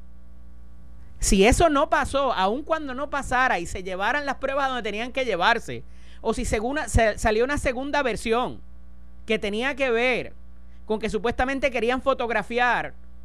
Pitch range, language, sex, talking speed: 170-255 Hz, Spanish, male, 145 wpm